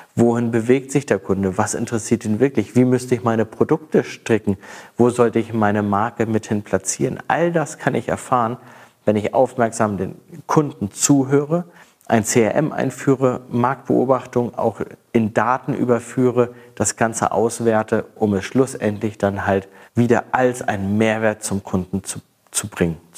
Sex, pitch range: male, 105-130 Hz